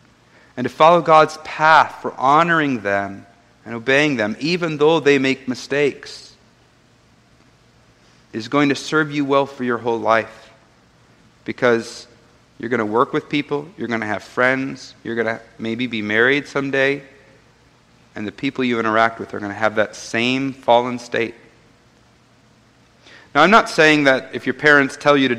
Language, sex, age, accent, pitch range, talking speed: English, male, 40-59, American, 110-140 Hz, 165 wpm